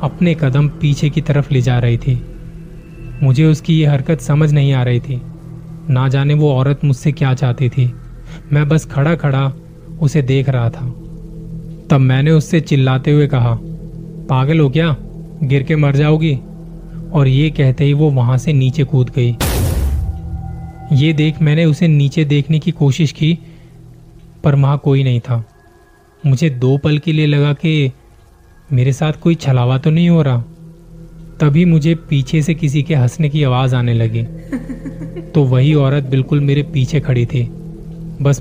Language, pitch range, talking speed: Hindi, 135-160 Hz, 165 wpm